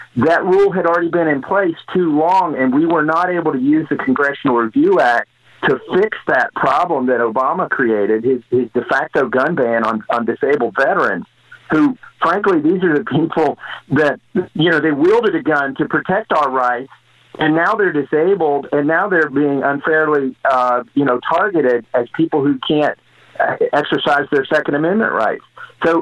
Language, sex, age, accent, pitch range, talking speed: English, male, 50-69, American, 130-175 Hz, 180 wpm